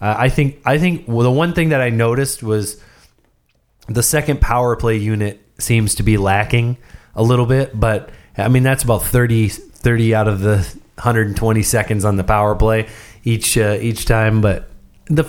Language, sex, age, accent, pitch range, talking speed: English, male, 30-49, American, 100-125 Hz, 190 wpm